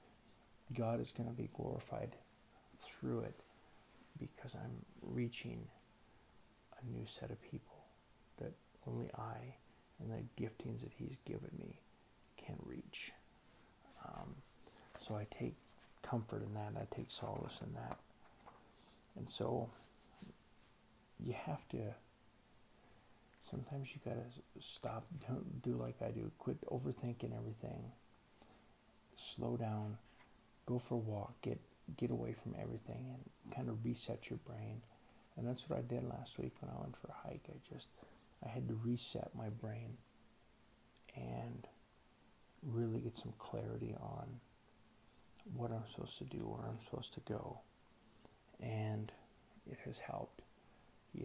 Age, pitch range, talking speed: 50-69, 110-125 Hz, 135 wpm